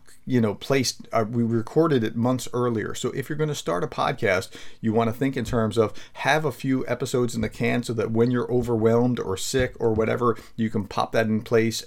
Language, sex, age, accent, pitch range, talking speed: English, male, 40-59, American, 110-125 Hz, 235 wpm